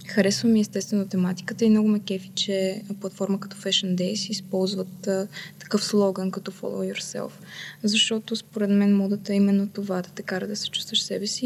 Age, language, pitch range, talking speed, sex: 20-39, Bulgarian, 195-230 Hz, 185 wpm, female